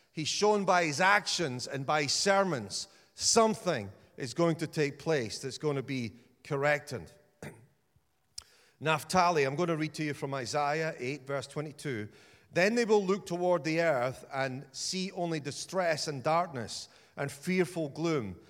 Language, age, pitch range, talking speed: English, 40-59, 140-180 Hz, 155 wpm